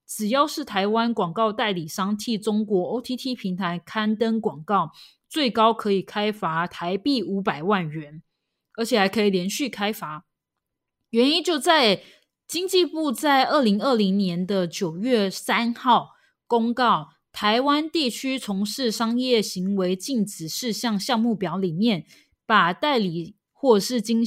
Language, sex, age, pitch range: Chinese, female, 20-39, 185-235 Hz